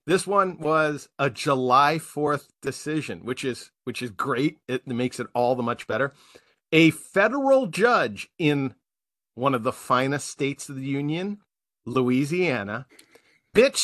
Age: 40-59